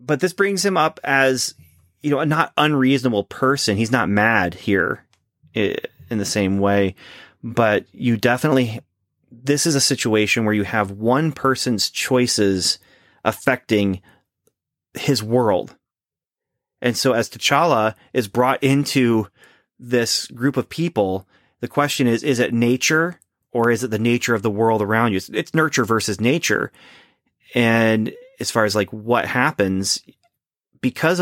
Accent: American